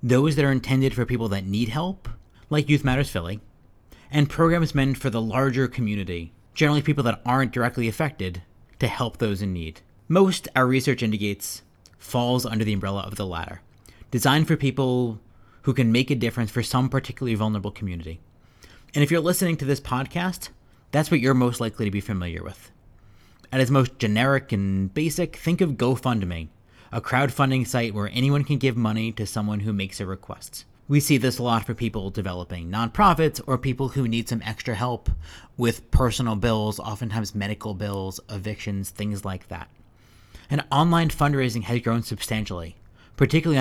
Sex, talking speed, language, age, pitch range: male, 175 wpm, English, 30-49, 100-135 Hz